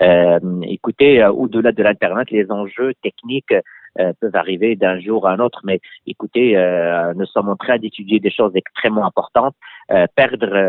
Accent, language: French, French